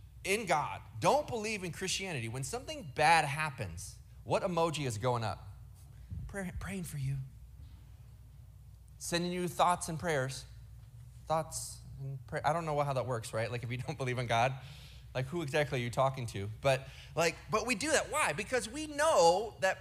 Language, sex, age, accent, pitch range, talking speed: English, male, 30-49, American, 110-145 Hz, 180 wpm